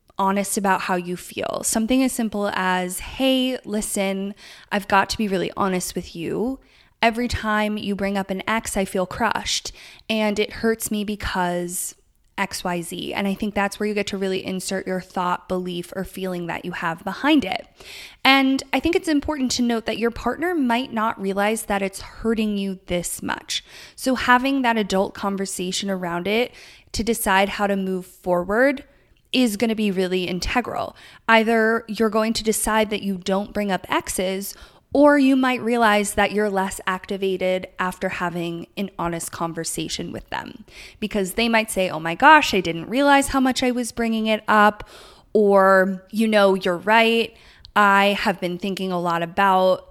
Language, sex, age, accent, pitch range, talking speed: English, female, 20-39, American, 190-230 Hz, 180 wpm